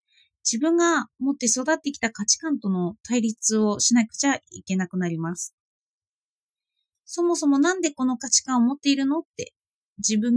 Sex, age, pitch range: female, 20-39, 220-320 Hz